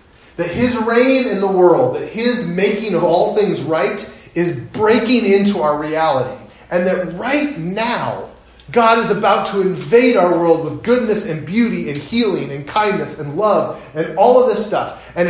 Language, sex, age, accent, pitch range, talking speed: English, male, 30-49, American, 130-200 Hz, 175 wpm